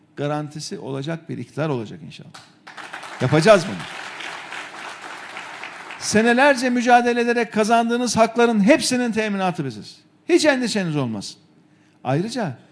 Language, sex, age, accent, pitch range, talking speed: Turkish, male, 50-69, native, 155-215 Hz, 95 wpm